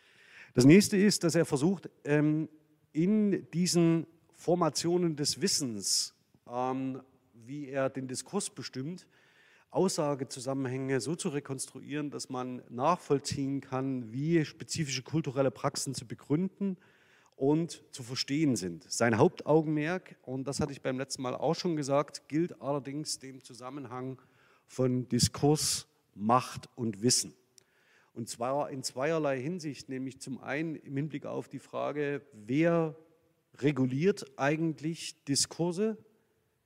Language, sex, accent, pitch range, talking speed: German, male, German, 130-160 Hz, 120 wpm